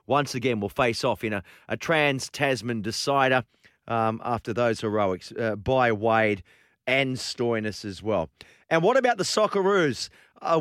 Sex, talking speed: male, 155 wpm